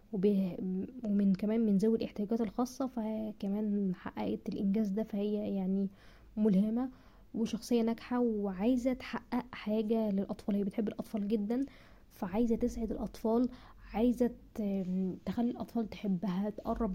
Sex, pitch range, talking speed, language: female, 200-230 Hz, 110 wpm, Arabic